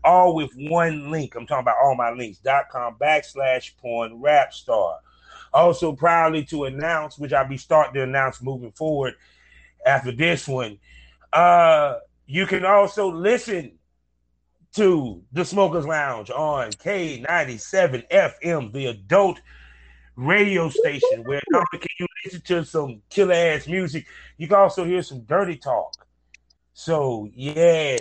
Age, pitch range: 30-49, 120-170 Hz